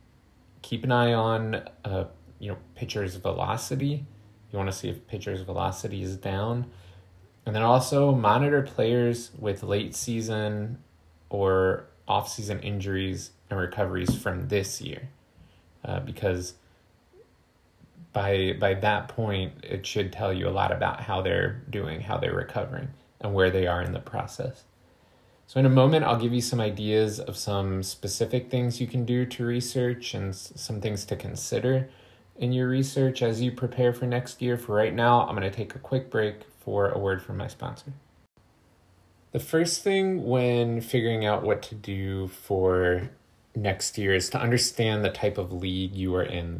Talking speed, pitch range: 165 wpm, 95-125 Hz